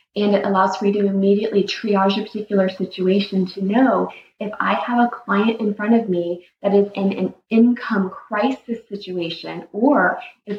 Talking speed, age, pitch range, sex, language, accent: 175 wpm, 20-39, 190-220 Hz, female, English, American